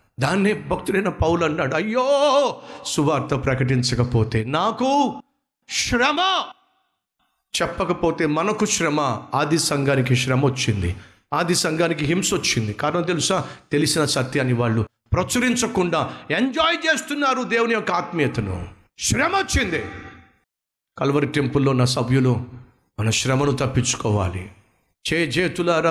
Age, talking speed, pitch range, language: 50-69, 95 wpm, 125-185 Hz, Telugu